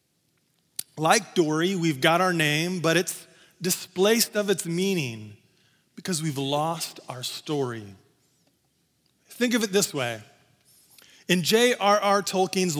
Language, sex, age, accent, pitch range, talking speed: English, male, 30-49, American, 155-205 Hz, 115 wpm